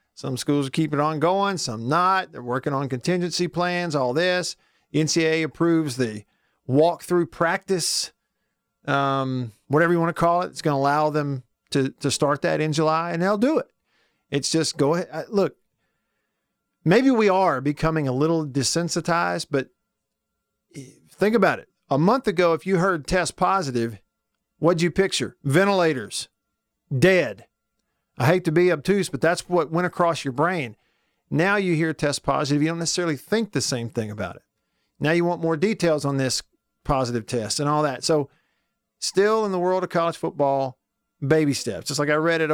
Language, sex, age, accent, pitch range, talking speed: English, male, 50-69, American, 140-175 Hz, 175 wpm